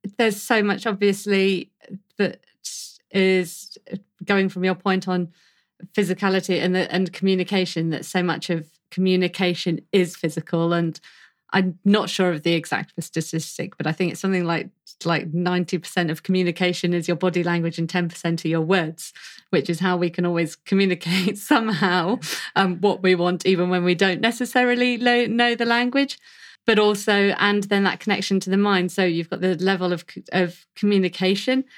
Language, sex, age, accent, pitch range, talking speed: English, female, 30-49, British, 175-195 Hz, 165 wpm